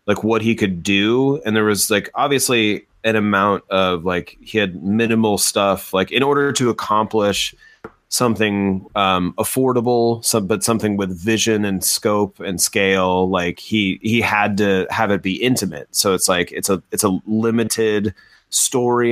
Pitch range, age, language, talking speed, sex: 95-115 Hz, 30-49, English, 165 wpm, male